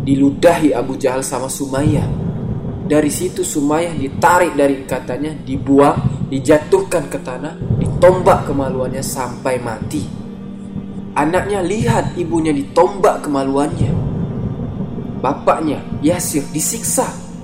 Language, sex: Indonesian, male